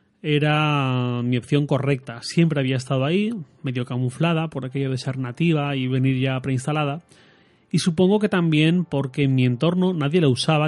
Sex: male